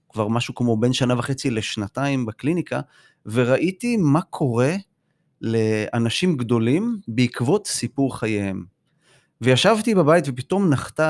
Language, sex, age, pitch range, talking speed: Hebrew, male, 30-49, 115-155 Hz, 110 wpm